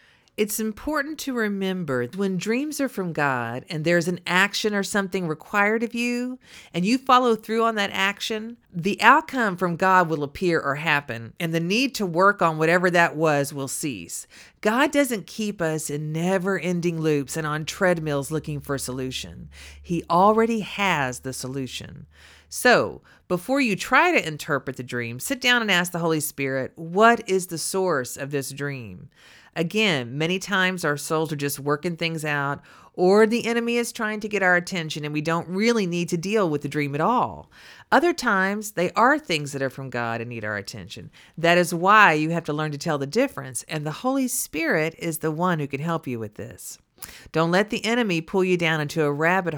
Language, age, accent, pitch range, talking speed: English, 40-59, American, 145-205 Hz, 200 wpm